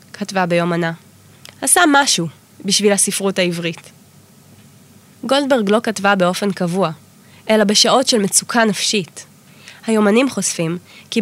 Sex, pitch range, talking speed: female, 190-245 Hz, 105 wpm